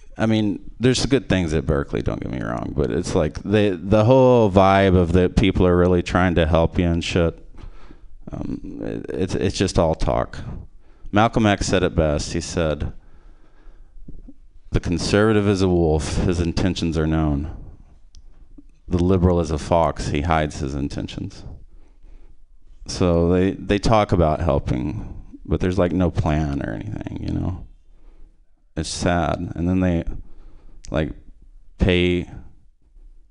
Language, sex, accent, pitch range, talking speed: English, male, American, 80-90 Hz, 150 wpm